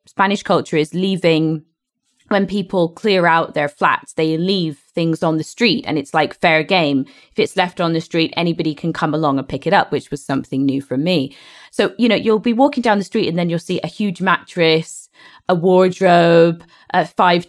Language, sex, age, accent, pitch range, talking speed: English, female, 20-39, British, 160-200 Hz, 210 wpm